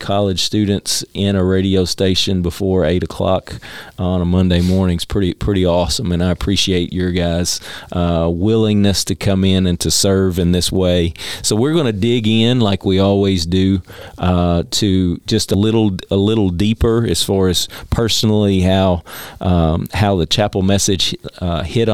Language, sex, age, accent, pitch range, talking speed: English, male, 40-59, American, 90-105 Hz, 170 wpm